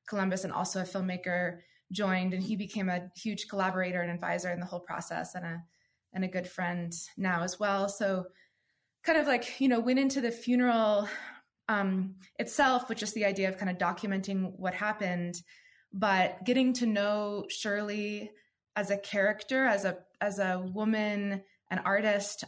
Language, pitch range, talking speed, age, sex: English, 185-215 Hz, 170 wpm, 20-39, female